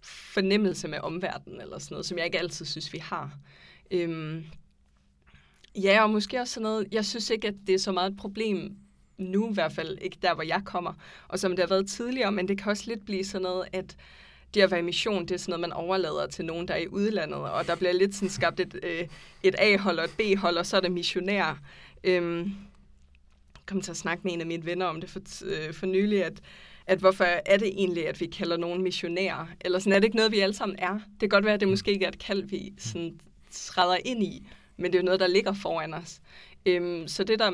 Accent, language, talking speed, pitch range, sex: native, Danish, 240 wpm, 170-195 Hz, female